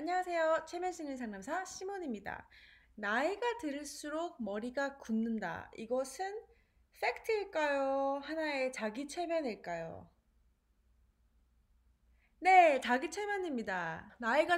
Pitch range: 210-320 Hz